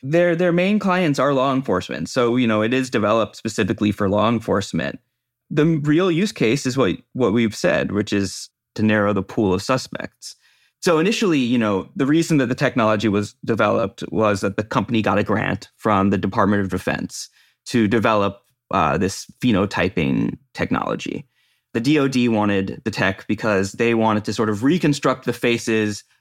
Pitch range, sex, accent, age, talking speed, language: 105-130 Hz, male, American, 30-49, 175 wpm, English